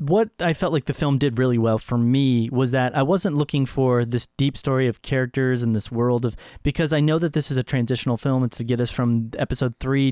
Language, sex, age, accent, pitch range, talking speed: English, male, 30-49, American, 120-145 Hz, 250 wpm